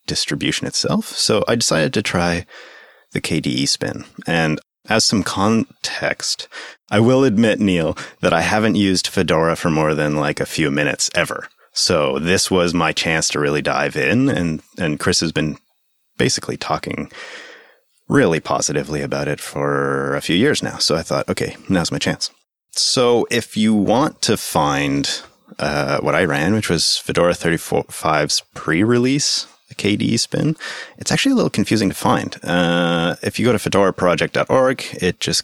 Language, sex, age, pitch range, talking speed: English, male, 30-49, 75-105 Hz, 160 wpm